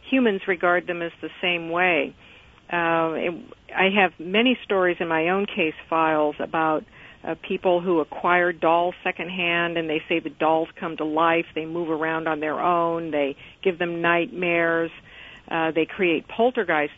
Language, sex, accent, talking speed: English, female, American, 165 wpm